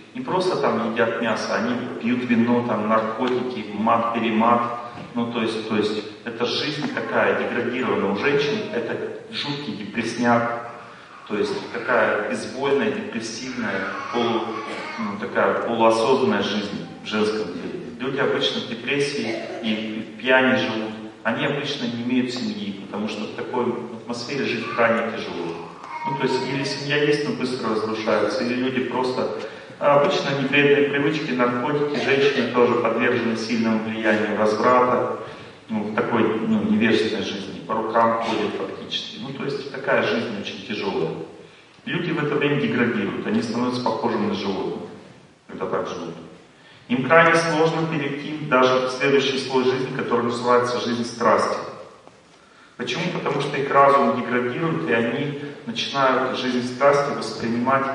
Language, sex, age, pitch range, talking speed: Russian, male, 40-59, 115-135 Hz, 140 wpm